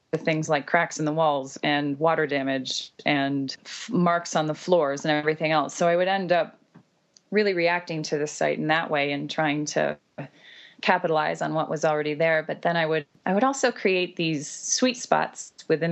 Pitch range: 150-180 Hz